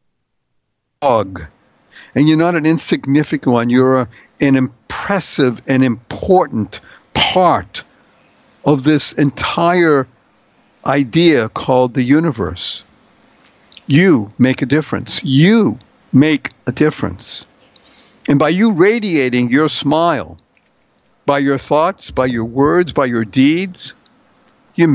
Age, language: 60-79, English